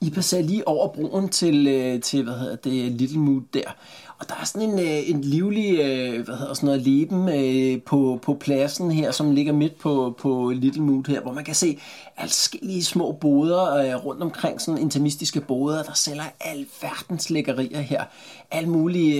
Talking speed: 170 wpm